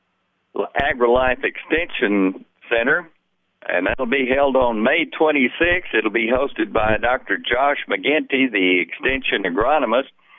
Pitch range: 120-150 Hz